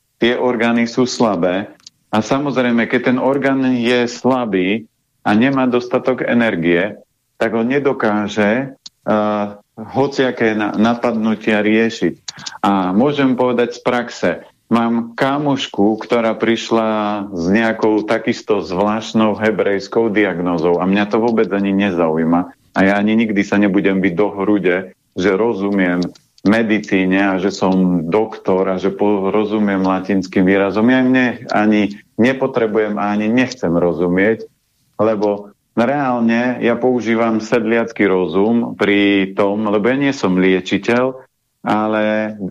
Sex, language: male, Slovak